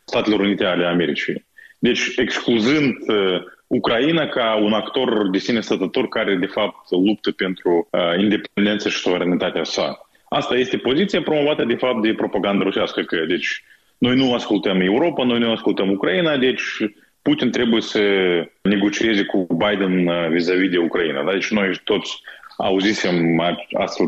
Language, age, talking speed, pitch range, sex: Romanian, 20-39, 145 wpm, 100-145 Hz, male